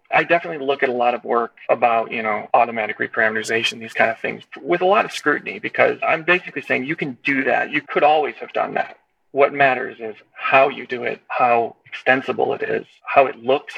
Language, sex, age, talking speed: English, male, 40-59, 220 wpm